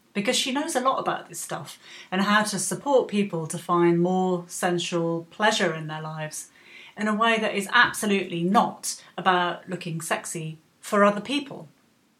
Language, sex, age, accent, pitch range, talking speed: English, female, 30-49, British, 170-205 Hz, 165 wpm